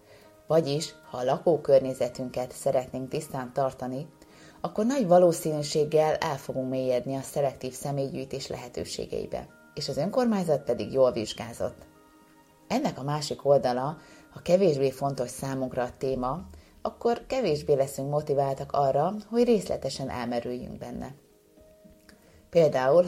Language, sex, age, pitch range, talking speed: Hungarian, female, 30-49, 125-150 Hz, 110 wpm